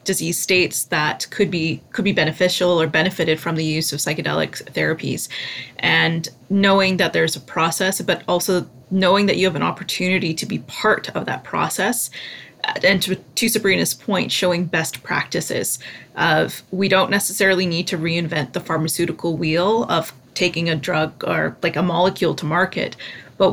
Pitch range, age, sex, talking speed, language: 160-185 Hz, 20-39, female, 165 wpm, English